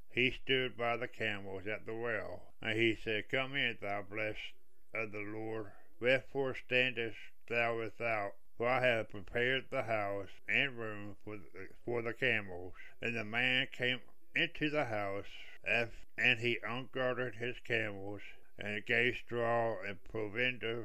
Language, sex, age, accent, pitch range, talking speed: English, male, 60-79, American, 105-125 Hz, 150 wpm